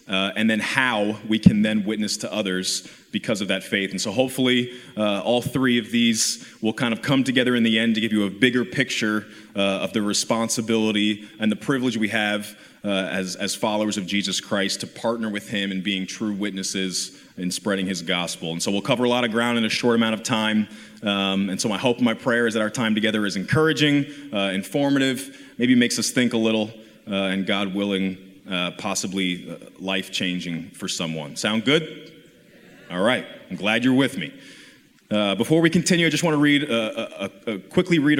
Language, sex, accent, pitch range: English, male, American, 100-125 Hz